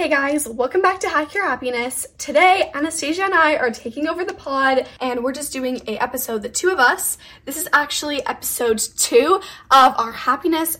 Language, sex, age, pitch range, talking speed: English, female, 10-29, 235-320 Hz, 195 wpm